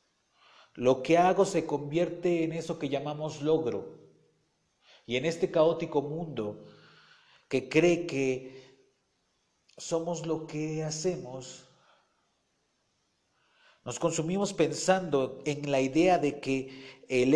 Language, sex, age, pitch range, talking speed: Spanish, male, 40-59, 130-180 Hz, 105 wpm